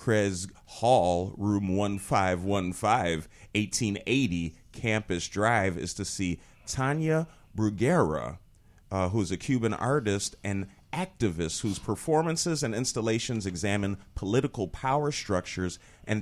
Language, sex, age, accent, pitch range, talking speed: English, male, 40-59, American, 90-115 Hz, 105 wpm